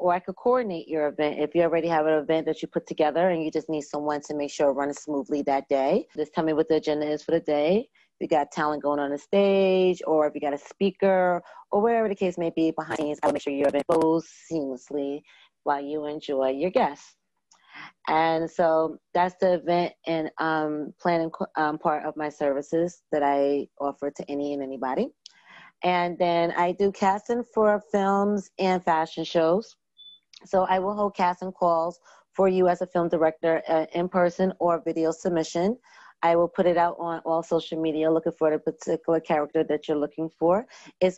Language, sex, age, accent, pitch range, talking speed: English, female, 30-49, American, 150-180 Hz, 205 wpm